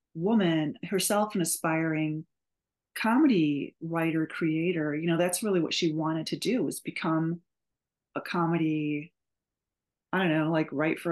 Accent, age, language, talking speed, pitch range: American, 30-49, English, 140 wpm, 155-185 Hz